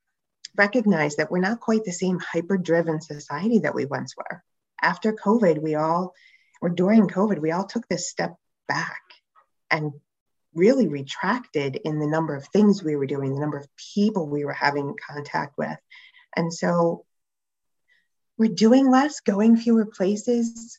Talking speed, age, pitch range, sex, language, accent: 155 wpm, 30-49, 155-205 Hz, female, English, American